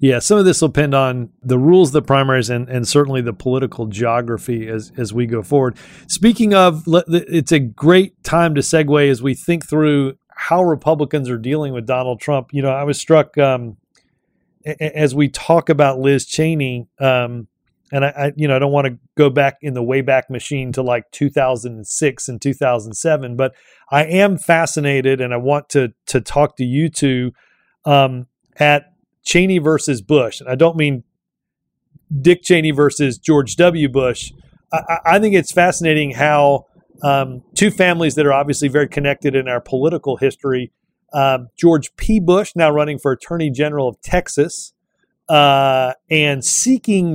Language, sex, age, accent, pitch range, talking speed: English, male, 40-59, American, 130-160 Hz, 180 wpm